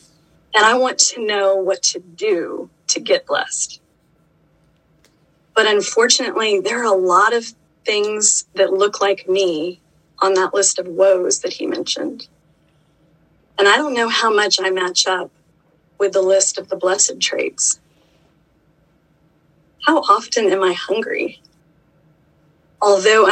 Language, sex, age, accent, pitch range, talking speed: English, female, 30-49, American, 180-250 Hz, 135 wpm